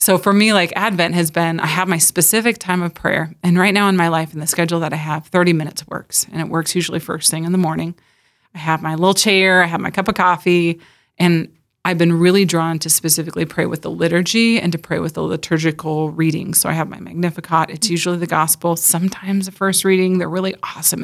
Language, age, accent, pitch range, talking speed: English, 30-49, American, 160-180 Hz, 235 wpm